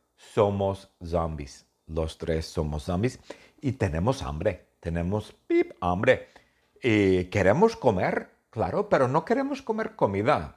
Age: 50-69